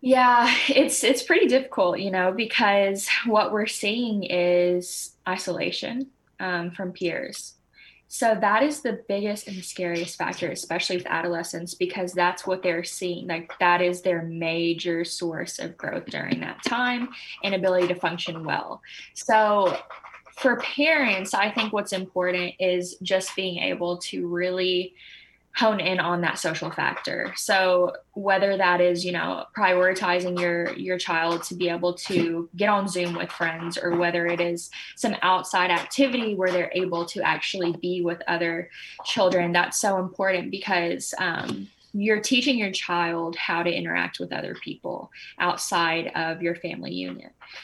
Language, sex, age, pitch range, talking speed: English, female, 10-29, 175-200 Hz, 155 wpm